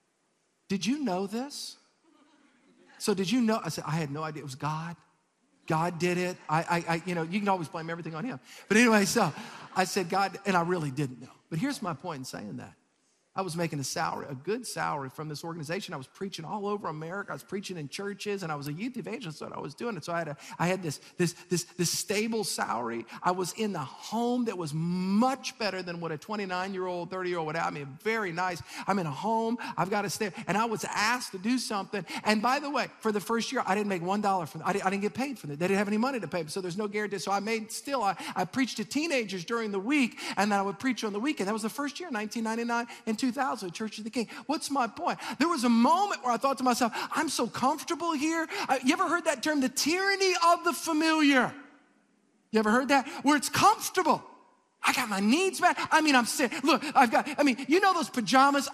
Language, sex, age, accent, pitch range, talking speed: English, male, 50-69, American, 180-270 Hz, 250 wpm